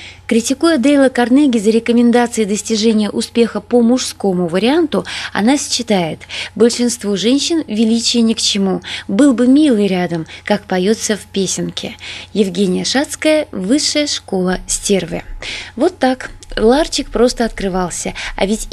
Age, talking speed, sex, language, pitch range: 20-39, 120 wpm, female, Russian, 195-255 Hz